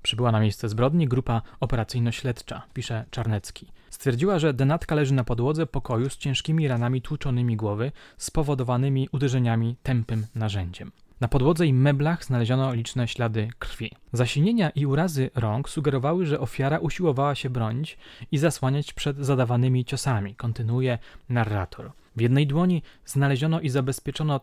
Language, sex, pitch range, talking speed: Polish, male, 120-150 Hz, 135 wpm